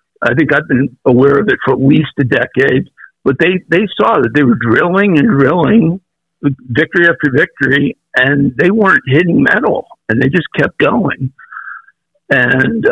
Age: 50-69